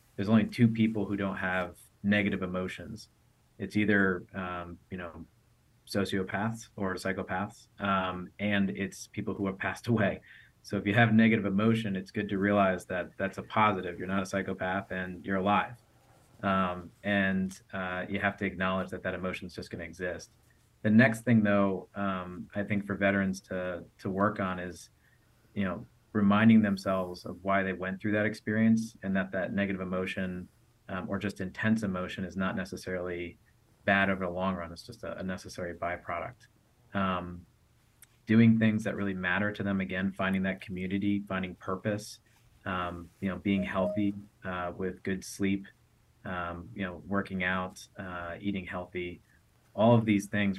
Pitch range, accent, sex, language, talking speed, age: 95-105 Hz, American, male, English, 170 wpm, 30-49